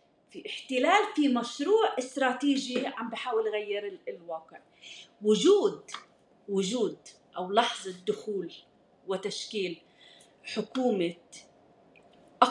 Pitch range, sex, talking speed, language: 215-290 Hz, female, 75 wpm, Arabic